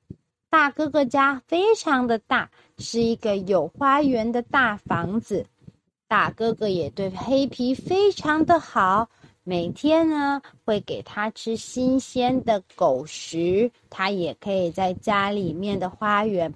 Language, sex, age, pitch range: Chinese, female, 30-49, 190-265 Hz